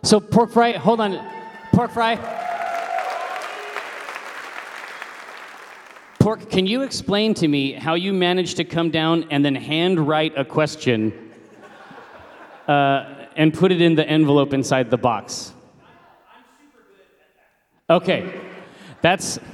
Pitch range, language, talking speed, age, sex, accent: 145-180 Hz, English, 110 wpm, 30-49, male, American